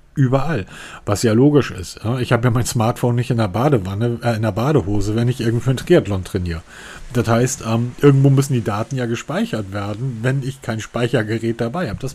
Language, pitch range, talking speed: German, 105-135 Hz, 205 wpm